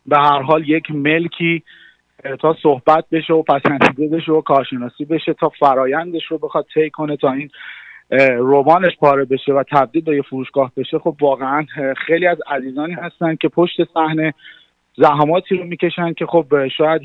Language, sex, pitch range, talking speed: Persian, male, 135-160 Hz, 160 wpm